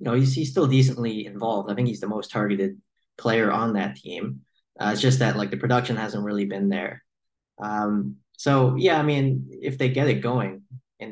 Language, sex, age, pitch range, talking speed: English, male, 20-39, 100-125 Hz, 205 wpm